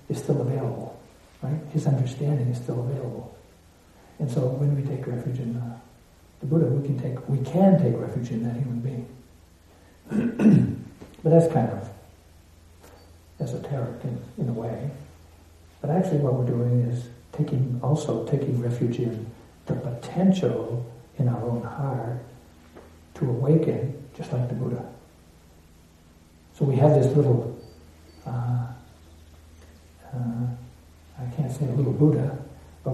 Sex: male